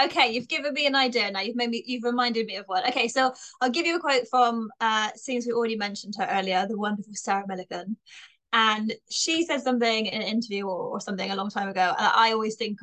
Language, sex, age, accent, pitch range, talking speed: English, female, 20-39, British, 210-255 Hz, 240 wpm